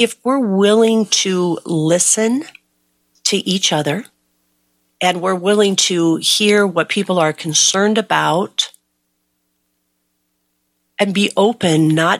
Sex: female